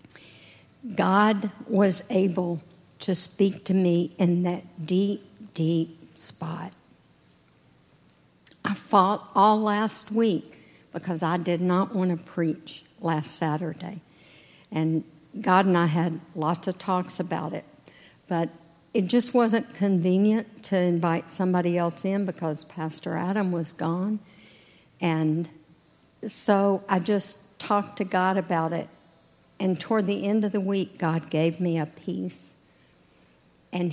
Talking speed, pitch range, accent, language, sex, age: 130 wpm, 165-200 Hz, American, English, female, 50-69